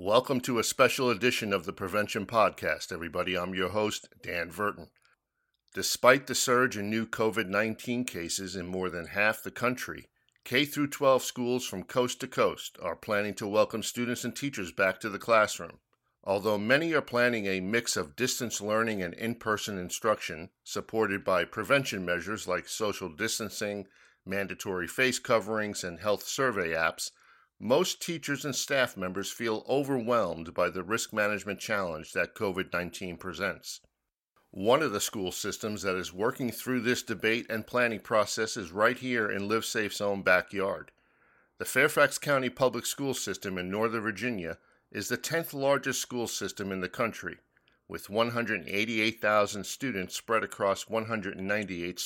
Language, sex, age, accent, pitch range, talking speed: English, male, 50-69, American, 100-120 Hz, 150 wpm